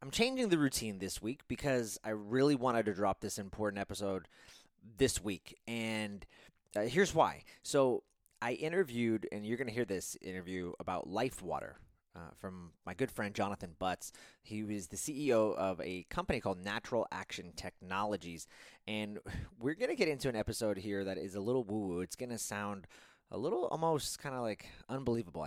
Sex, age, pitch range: male, 20-39, 95-120 Hz